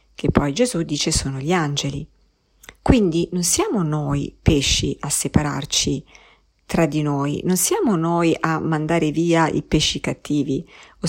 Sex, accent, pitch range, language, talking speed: female, native, 155-220 Hz, Italian, 145 wpm